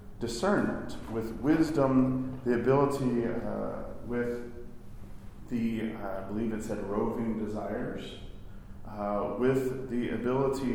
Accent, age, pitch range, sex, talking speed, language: American, 40-59, 105-120 Hz, male, 100 wpm, English